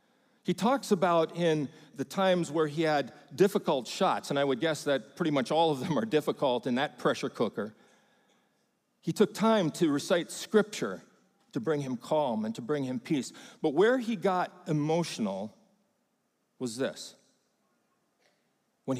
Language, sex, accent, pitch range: English, male, American, 140-200 Hz